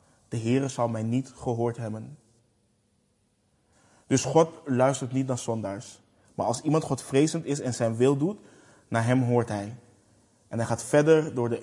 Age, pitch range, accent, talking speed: 20-39, 115-135 Hz, Dutch, 170 wpm